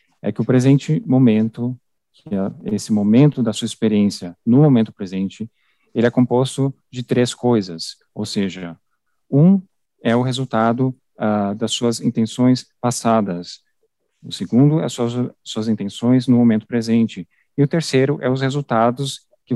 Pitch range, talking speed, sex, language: 110-130 Hz, 150 wpm, male, English